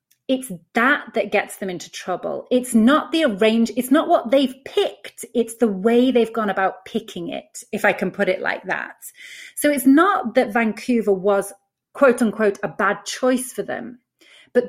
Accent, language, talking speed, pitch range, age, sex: British, English, 185 wpm, 185-240 Hz, 30-49, female